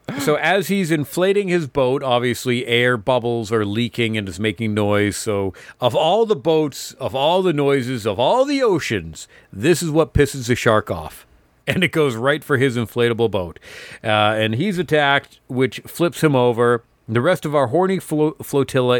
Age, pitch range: 40-59, 115-155 Hz